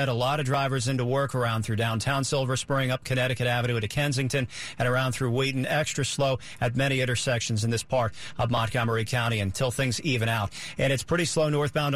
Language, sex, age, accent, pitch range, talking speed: English, male, 40-59, American, 125-150 Hz, 200 wpm